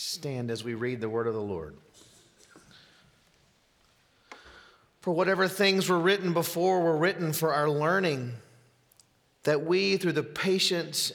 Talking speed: 135 wpm